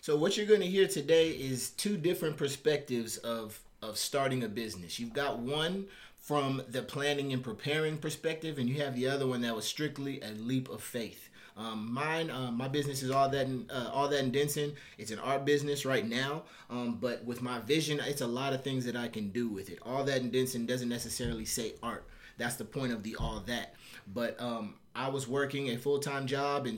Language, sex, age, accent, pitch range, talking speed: English, male, 30-49, American, 115-140 Hz, 215 wpm